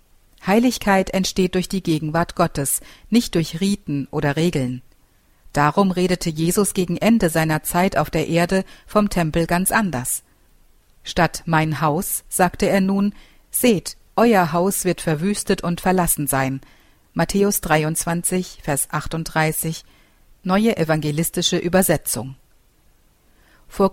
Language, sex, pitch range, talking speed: German, female, 155-195 Hz, 120 wpm